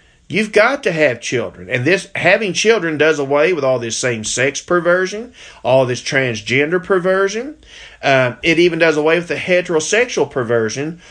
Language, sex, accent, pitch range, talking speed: English, male, American, 125-170 Hz, 155 wpm